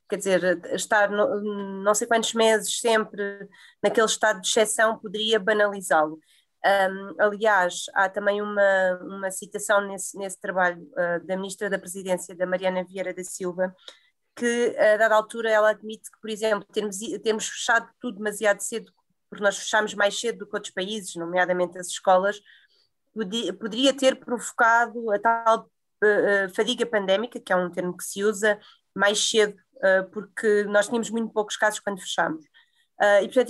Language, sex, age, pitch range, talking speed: Portuguese, female, 20-39, 190-220 Hz, 150 wpm